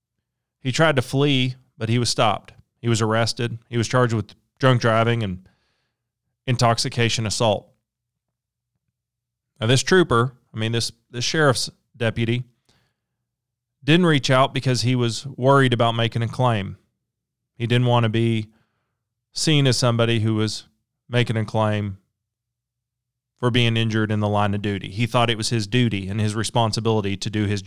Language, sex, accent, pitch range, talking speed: English, male, American, 110-125 Hz, 160 wpm